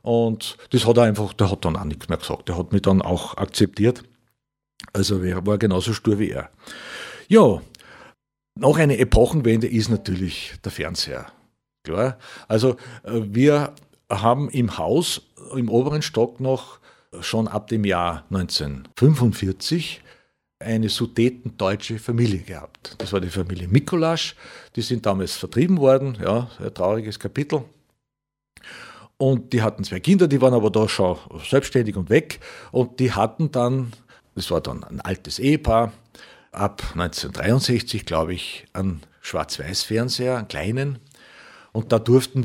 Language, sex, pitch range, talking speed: German, male, 95-125 Hz, 140 wpm